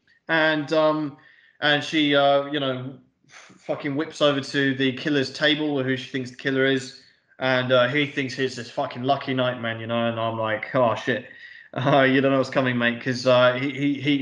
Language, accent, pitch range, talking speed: English, British, 125-155 Hz, 215 wpm